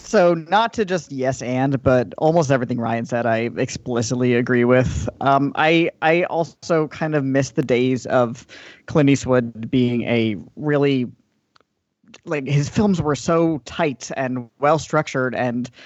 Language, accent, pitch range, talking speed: English, American, 125-150 Hz, 150 wpm